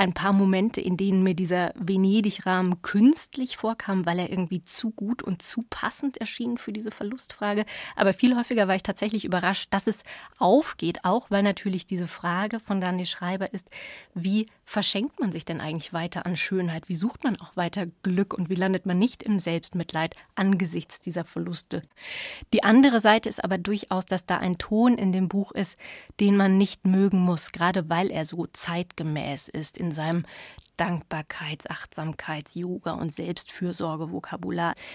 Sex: female